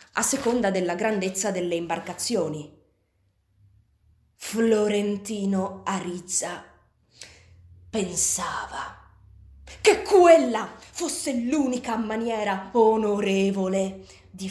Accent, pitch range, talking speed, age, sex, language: native, 180-235 Hz, 65 wpm, 20-39, female, Italian